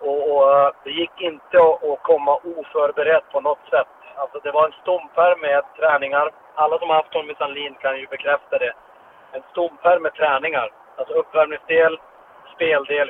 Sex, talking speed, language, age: male, 165 wpm, English, 30-49